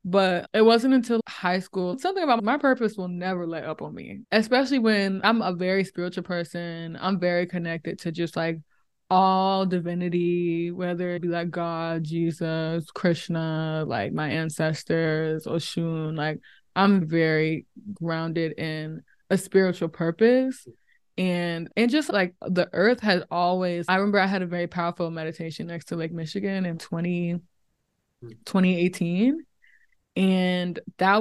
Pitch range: 165-190 Hz